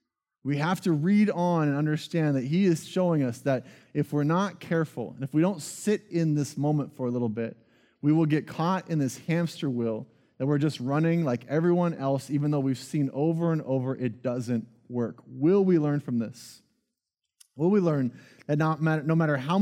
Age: 30-49